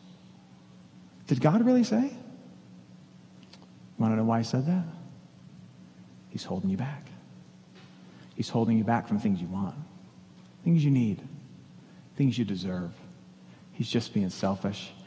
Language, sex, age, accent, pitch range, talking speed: English, male, 40-59, American, 120-190 Hz, 130 wpm